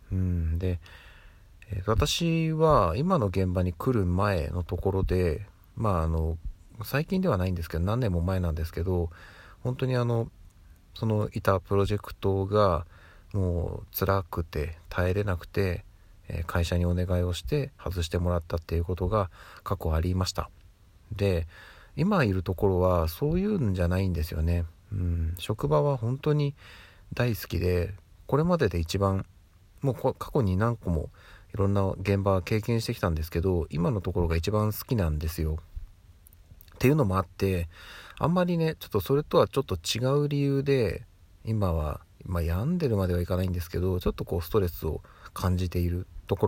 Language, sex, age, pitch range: Japanese, male, 40-59, 85-110 Hz